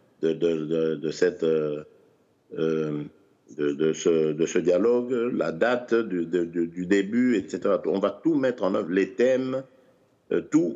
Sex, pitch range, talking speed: male, 80-110 Hz, 160 wpm